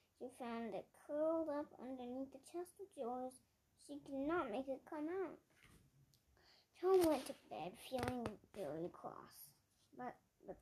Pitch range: 235-300 Hz